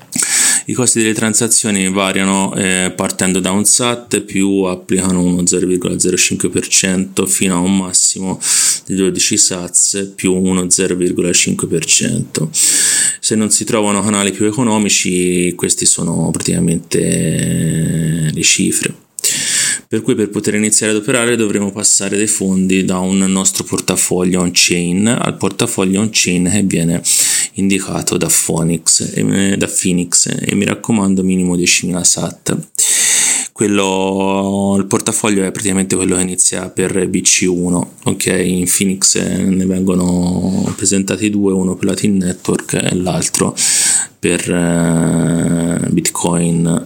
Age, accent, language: 30-49, native, Italian